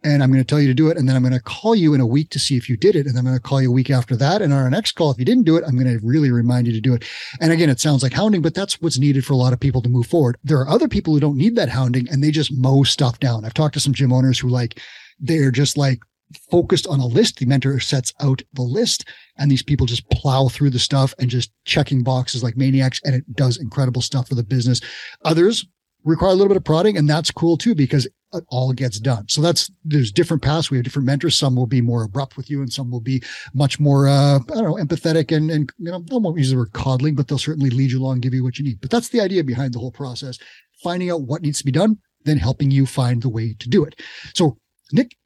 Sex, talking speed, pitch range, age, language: male, 295 wpm, 130-155 Hz, 30-49, English